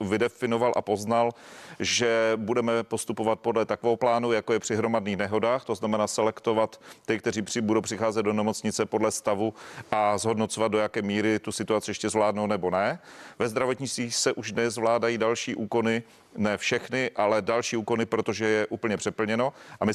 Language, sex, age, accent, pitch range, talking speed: Czech, male, 40-59, native, 110-145 Hz, 165 wpm